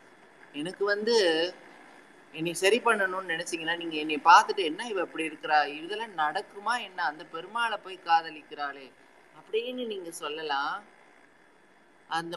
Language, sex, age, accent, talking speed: Tamil, male, 30-49, native, 110 wpm